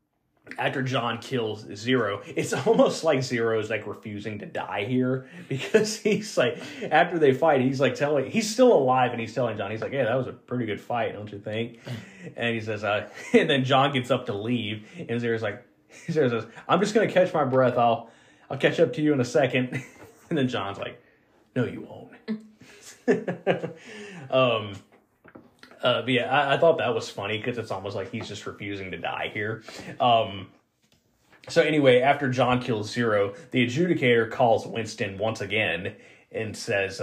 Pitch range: 115-155 Hz